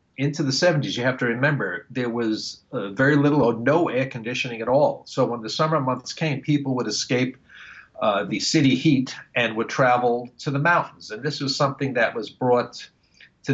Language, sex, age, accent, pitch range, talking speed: English, male, 50-69, American, 120-145 Hz, 200 wpm